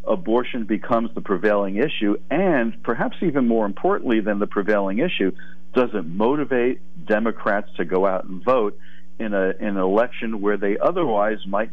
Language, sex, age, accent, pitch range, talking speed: English, male, 50-69, American, 95-115 Hz, 165 wpm